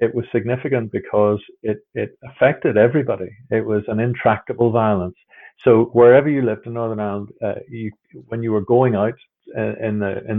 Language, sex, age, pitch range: English, male, 50-69, 100-120 Hz